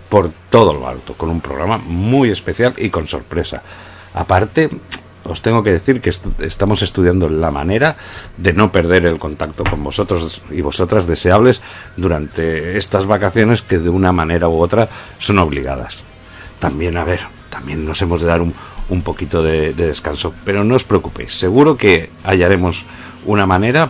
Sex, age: male, 60-79